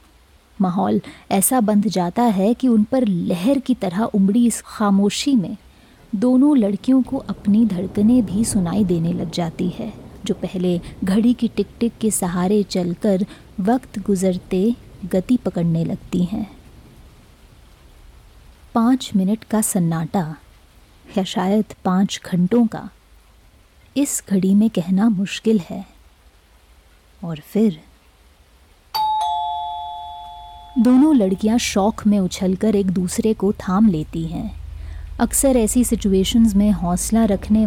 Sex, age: female, 20-39